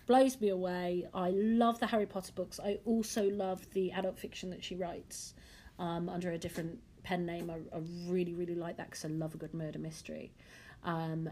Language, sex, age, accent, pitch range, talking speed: English, female, 40-59, British, 160-185 Hz, 200 wpm